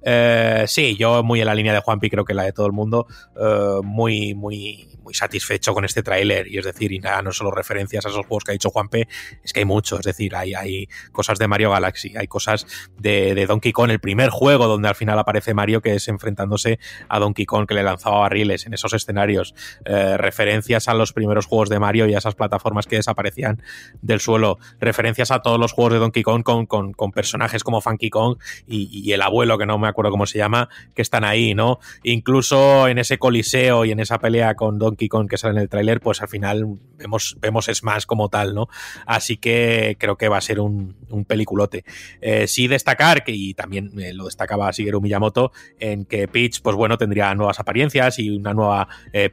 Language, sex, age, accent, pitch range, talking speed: Spanish, male, 20-39, Spanish, 100-115 Hz, 225 wpm